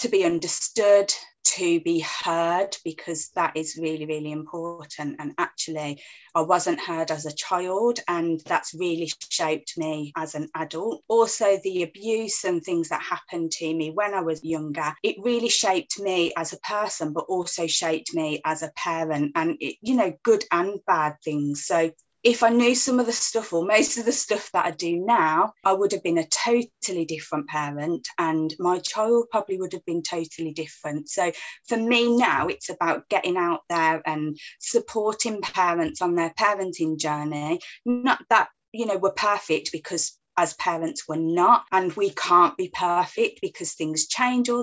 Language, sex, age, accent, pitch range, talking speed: English, female, 20-39, British, 160-220 Hz, 175 wpm